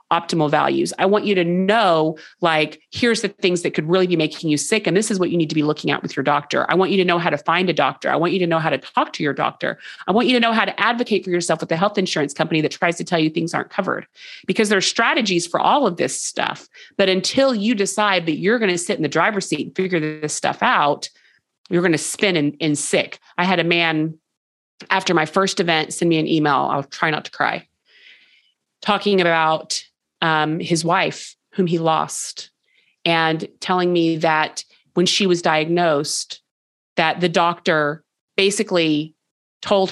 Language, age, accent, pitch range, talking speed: English, 30-49, American, 160-190 Hz, 220 wpm